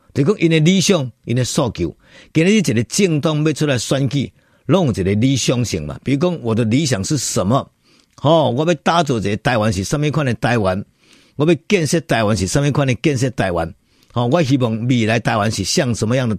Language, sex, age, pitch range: Chinese, male, 50-69, 105-155 Hz